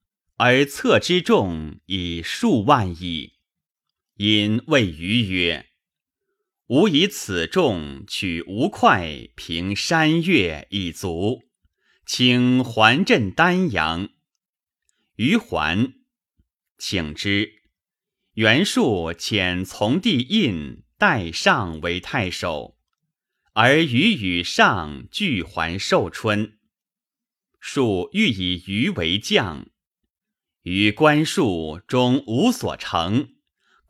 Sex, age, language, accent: male, 30-49, Chinese, native